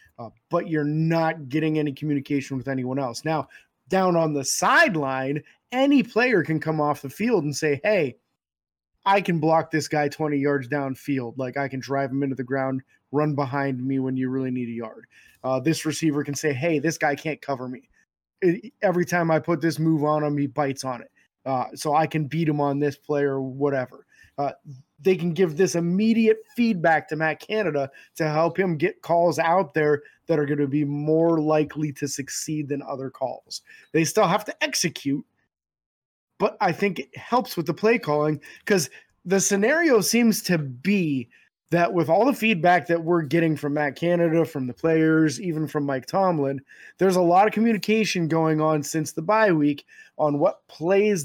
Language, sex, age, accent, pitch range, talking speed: English, male, 20-39, American, 140-175 Hz, 195 wpm